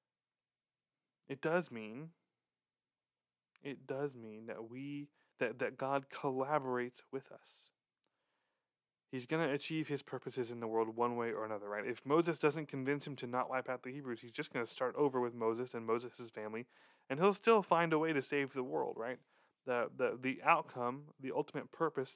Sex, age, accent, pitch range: male, 20-39, American, 120-145 Hz